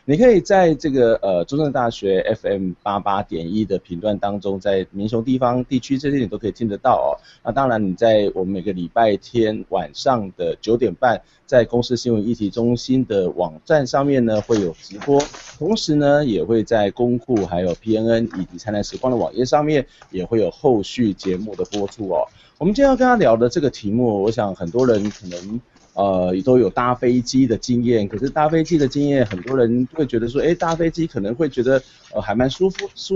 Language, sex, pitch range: Chinese, male, 105-135 Hz